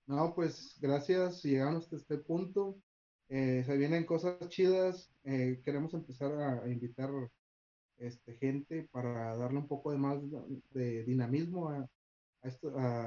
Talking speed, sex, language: 145 wpm, male, Spanish